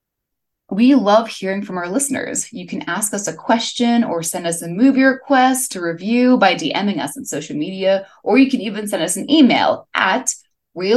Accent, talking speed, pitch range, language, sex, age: American, 190 wpm, 180-255 Hz, English, female, 20-39